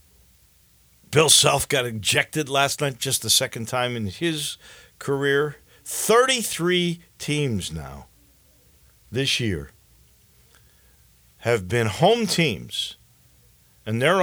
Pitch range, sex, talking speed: 105-155 Hz, male, 100 wpm